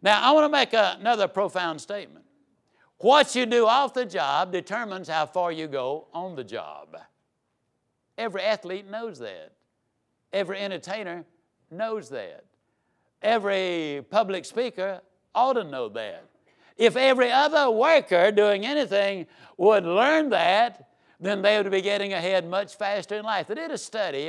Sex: male